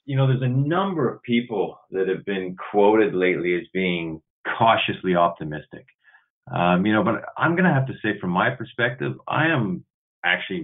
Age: 30-49